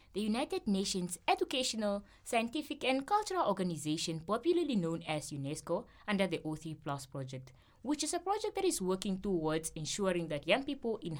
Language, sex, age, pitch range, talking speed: English, female, 20-39, 145-210 Hz, 155 wpm